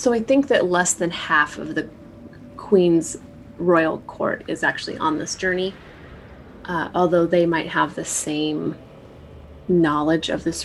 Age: 20-39